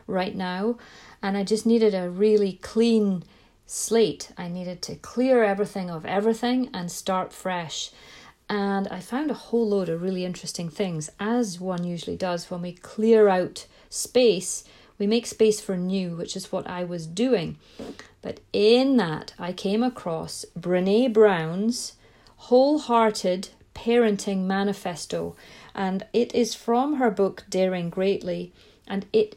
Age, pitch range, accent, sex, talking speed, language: 40-59, 180-225 Hz, British, female, 145 wpm, English